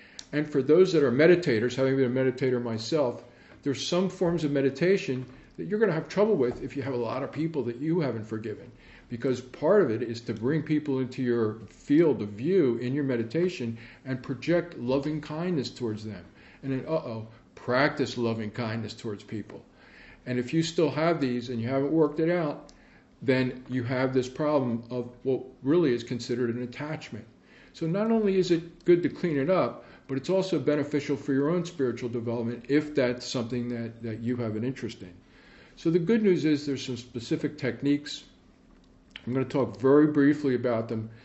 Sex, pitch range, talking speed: male, 120-145 Hz, 195 wpm